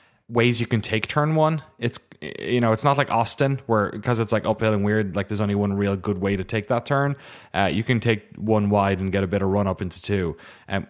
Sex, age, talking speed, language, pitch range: male, 20-39, 260 wpm, English, 105-125 Hz